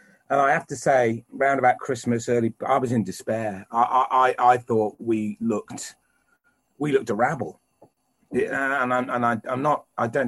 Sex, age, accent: male, 40-59, British